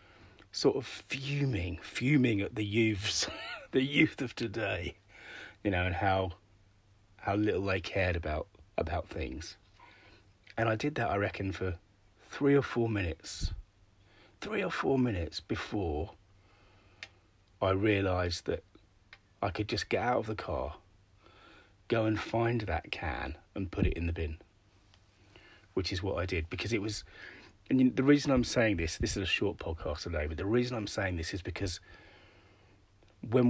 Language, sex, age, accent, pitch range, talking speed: English, male, 30-49, British, 90-105 Hz, 160 wpm